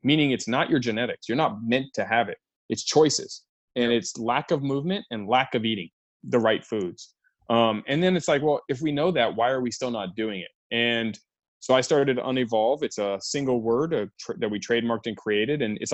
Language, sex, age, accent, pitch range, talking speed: English, male, 30-49, American, 115-140 Hz, 225 wpm